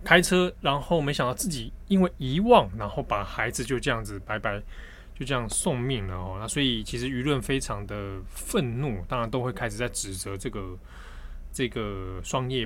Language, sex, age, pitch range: Chinese, male, 20-39, 95-135 Hz